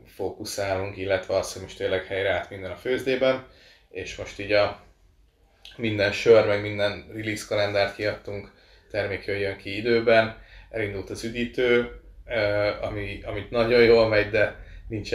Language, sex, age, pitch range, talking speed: Hungarian, male, 20-39, 95-105 Hz, 145 wpm